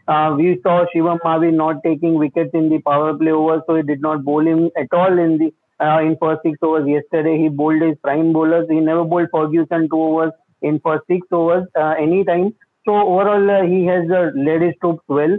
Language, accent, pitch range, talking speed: English, Indian, 155-175 Hz, 220 wpm